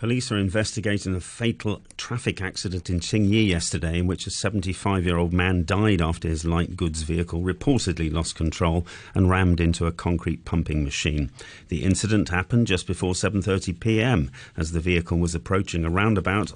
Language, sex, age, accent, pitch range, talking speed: English, male, 40-59, British, 85-110 Hz, 160 wpm